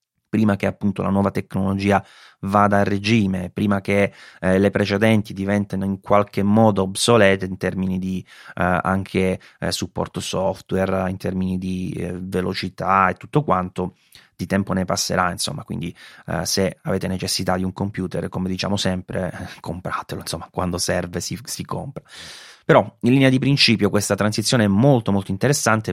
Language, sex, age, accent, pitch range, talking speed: Italian, male, 30-49, native, 95-110 Hz, 160 wpm